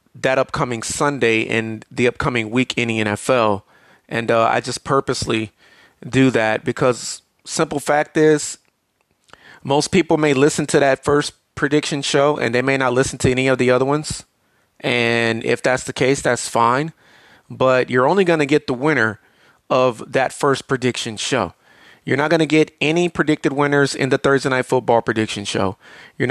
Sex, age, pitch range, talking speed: male, 30-49, 115-140 Hz, 175 wpm